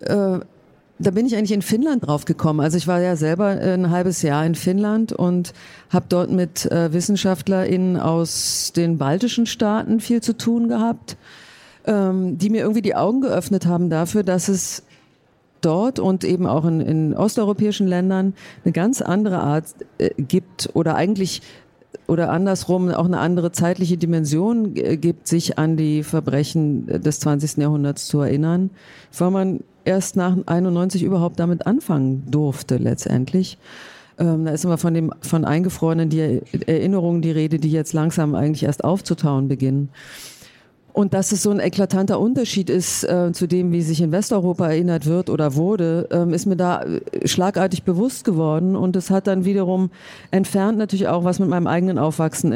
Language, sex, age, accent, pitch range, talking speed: German, female, 40-59, German, 160-195 Hz, 160 wpm